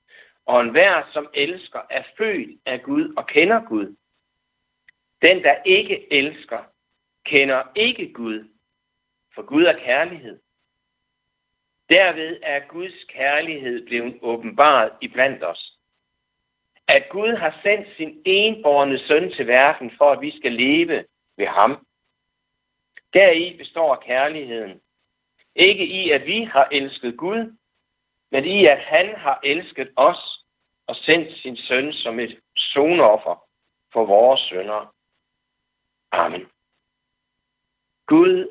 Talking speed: 120 wpm